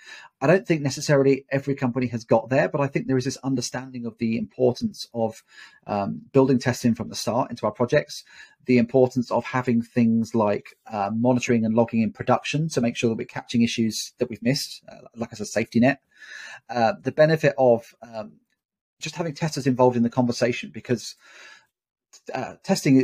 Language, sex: English, male